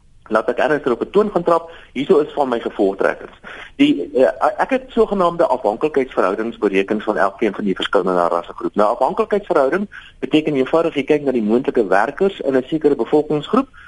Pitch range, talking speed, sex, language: 110-185 Hz, 180 wpm, male, Dutch